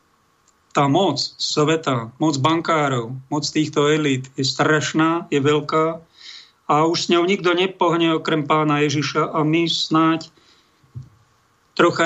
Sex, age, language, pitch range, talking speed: male, 50-69, Slovak, 140-160 Hz, 125 wpm